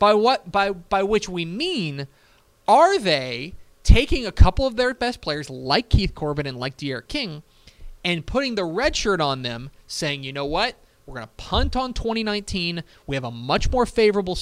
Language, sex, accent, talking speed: English, male, American, 190 wpm